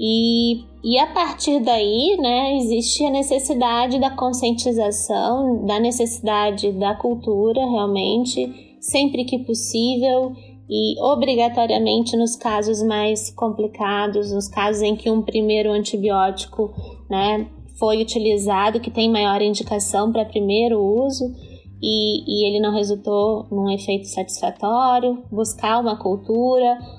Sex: female